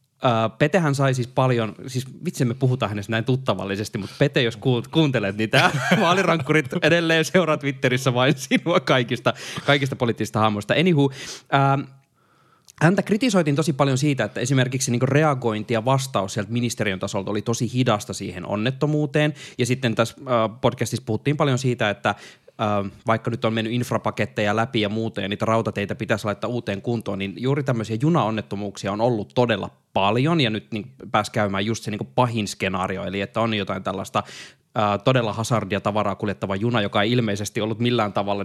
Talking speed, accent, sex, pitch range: 165 wpm, native, male, 105-140 Hz